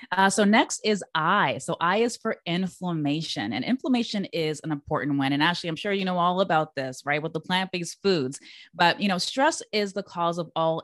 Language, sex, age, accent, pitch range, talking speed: English, female, 20-39, American, 150-200 Hz, 215 wpm